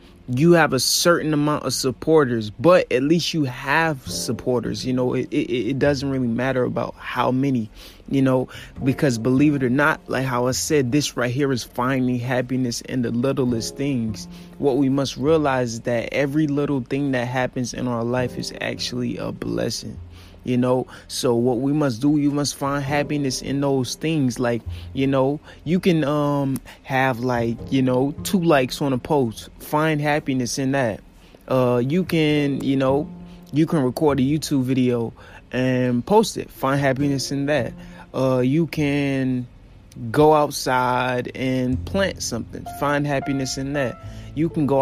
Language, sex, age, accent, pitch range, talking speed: English, male, 20-39, American, 120-145 Hz, 175 wpm